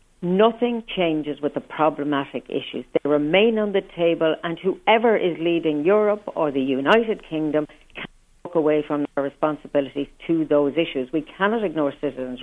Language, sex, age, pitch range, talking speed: English, female, 60-79, 150-190 Hz, 160 wpm